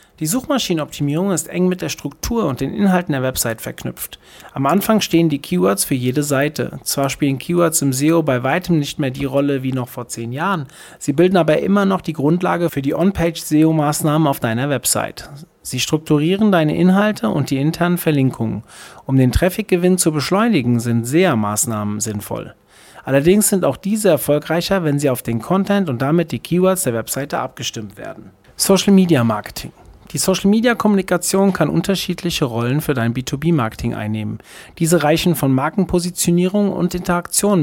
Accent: German